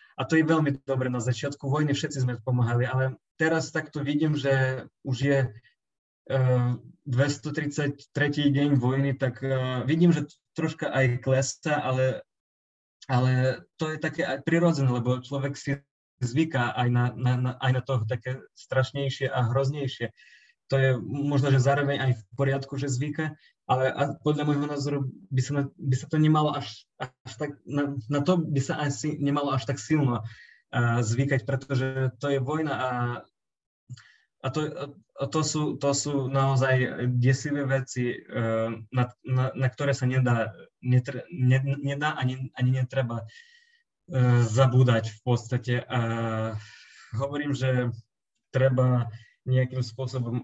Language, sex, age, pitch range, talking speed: Slovak, male, 20-39, 125-145 Hz, 135 wpm